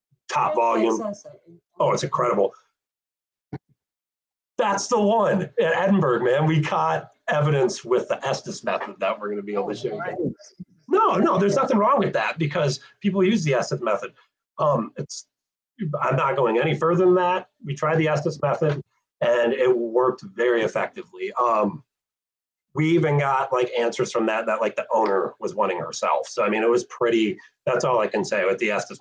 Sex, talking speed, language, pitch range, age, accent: male, 180 wpm, English, 115-180 Hz, 40-59, American